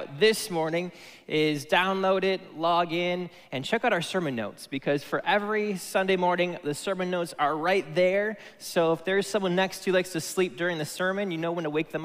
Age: 20-39